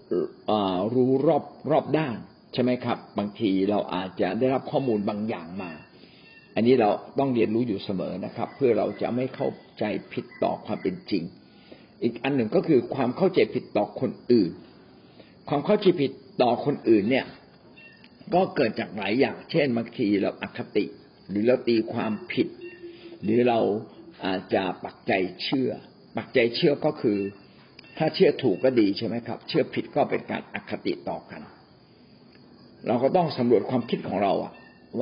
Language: Thai